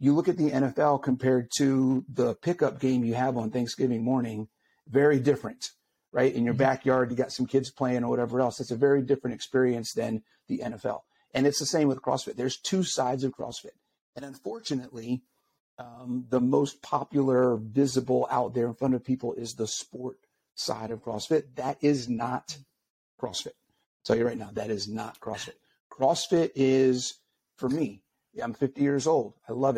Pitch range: 120-140 Hz